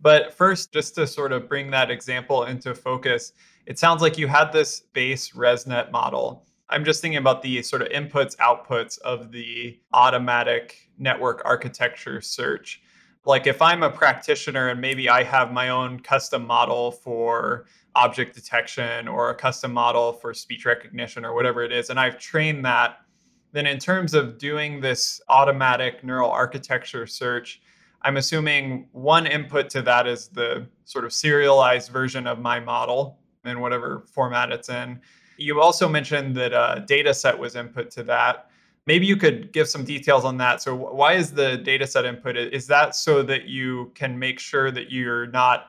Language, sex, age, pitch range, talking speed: English, male, 20-39, 125-150 Hz, 170 wpm